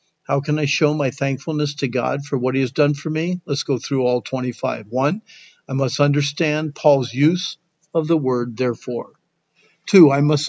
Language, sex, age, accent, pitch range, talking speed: English, male, 50-69, American, 135-165 Hz, 190 wpm